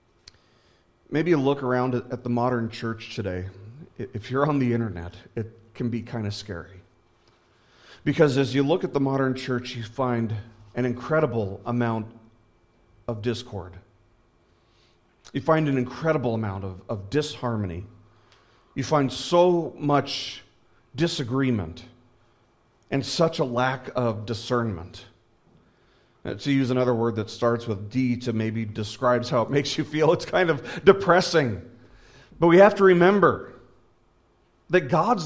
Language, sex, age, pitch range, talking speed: English, male, 40-59, 115-165 Hz, 140 wpm